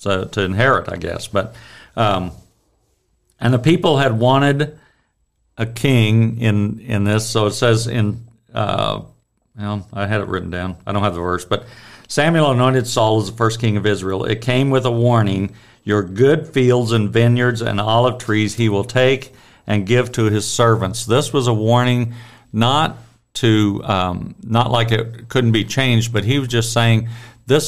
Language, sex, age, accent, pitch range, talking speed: English, male, 50-69, American, 100-120 Hz, 180 wpm